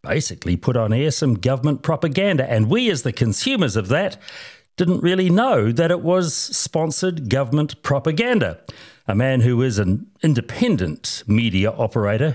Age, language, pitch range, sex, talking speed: 60-79, English, 110-180 Hz, male, 150 wpm